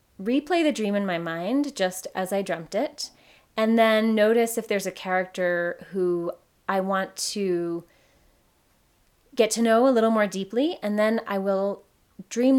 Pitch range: 175-210 Hz